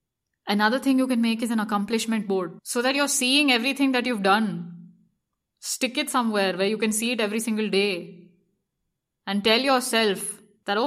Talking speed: 180 wpm